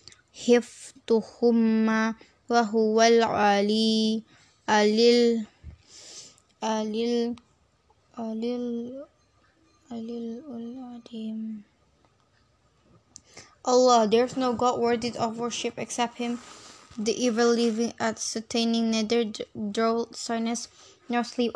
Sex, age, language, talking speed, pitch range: female, 10-29, English, 60 wpm, 225-245 Hz